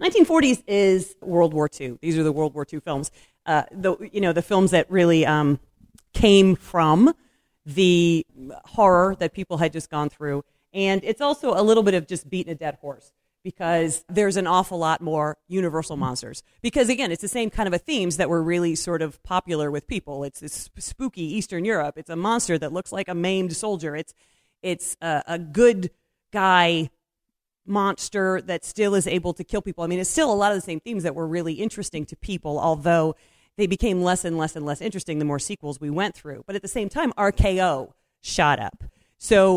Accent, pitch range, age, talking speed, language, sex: American, 160-200 Hz, 40-59, 205 wpm, English, female